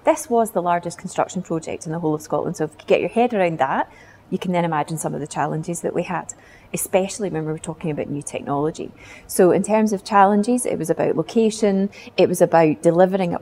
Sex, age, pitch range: female, 30-49, 165-195 Hz